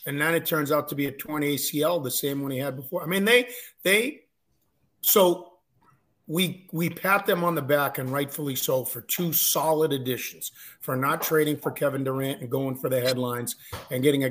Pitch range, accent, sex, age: 135-160 Hz, American, male, 50-69